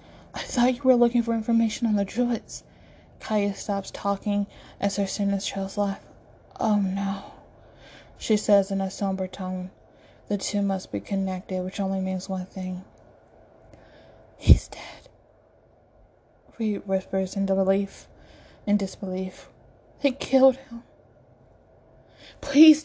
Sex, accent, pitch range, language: female, American, 195-220 Hz, English